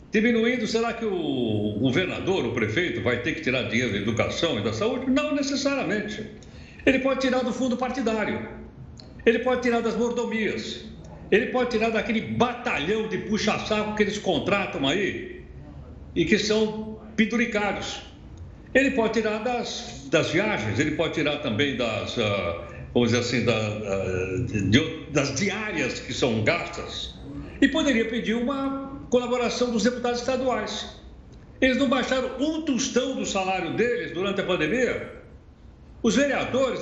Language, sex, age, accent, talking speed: Portuguese, male, 60-79, Brazilian, 140 wpm